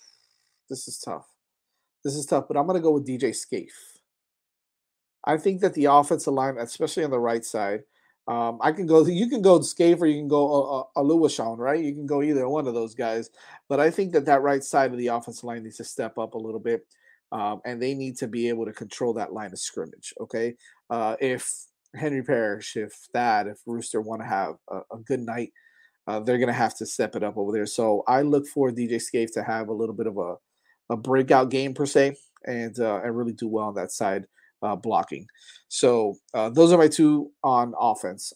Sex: male